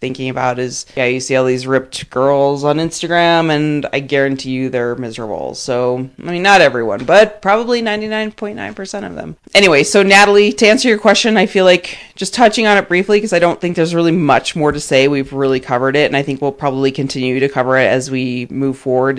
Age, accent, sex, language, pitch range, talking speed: 30-49, American, female, English, 130-170 Hz, 220 wpm